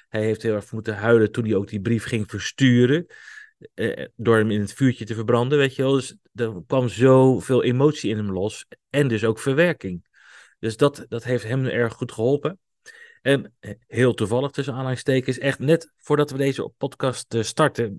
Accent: Dutch